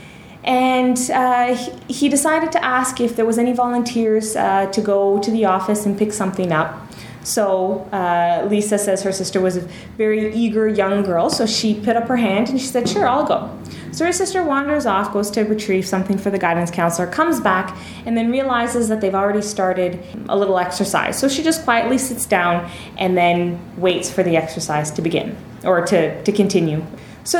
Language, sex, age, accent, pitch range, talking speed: English, female, 20-39, American, 195-260 Hz, 195 wpm